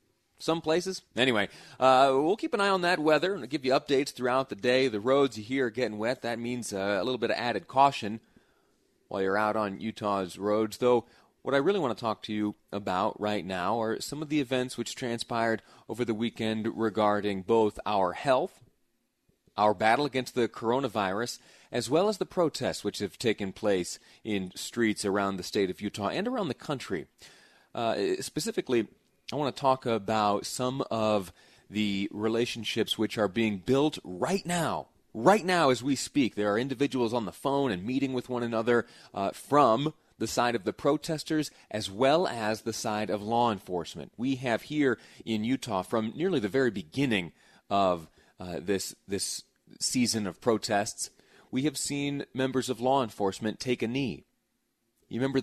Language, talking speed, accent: English, 180 wpm, American